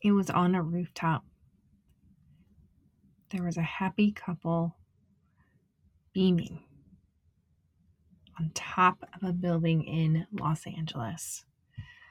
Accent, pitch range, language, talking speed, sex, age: American, 160-185 Hz, English, 95 wpm, female, 30-49